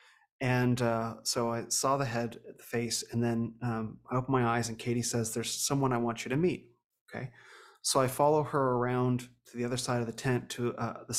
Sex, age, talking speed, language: male, 30-49, 225 wpm, English